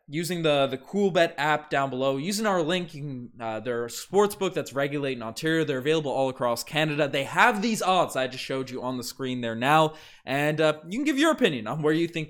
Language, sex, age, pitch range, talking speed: English, male, 20-39, 120-155 Hz, 225 wpm